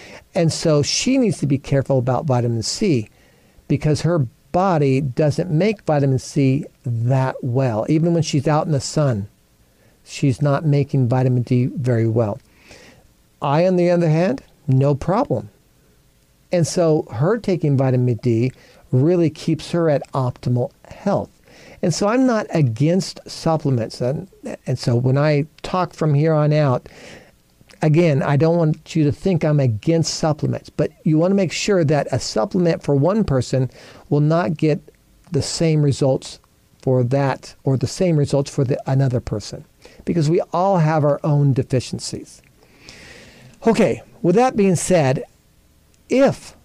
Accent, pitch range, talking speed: American, 130-165 Hz, 150 wpm